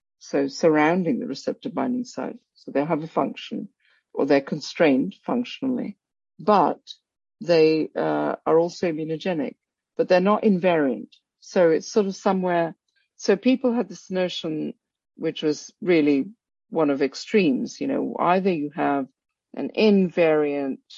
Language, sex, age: English, female, 50-69